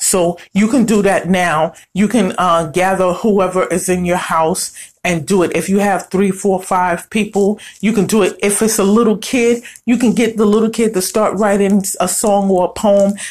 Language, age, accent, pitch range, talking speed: English, 40-59, American, 185-220 Hz, 215 wpm